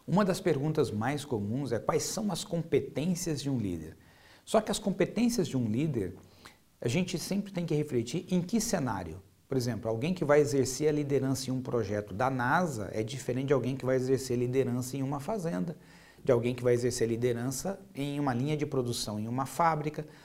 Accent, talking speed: Brazilian, 205 wpm